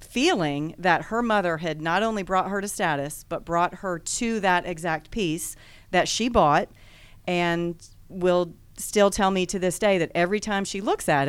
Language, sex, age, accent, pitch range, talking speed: English, female, 40-59, American, 170-200 Hz, 185 wpm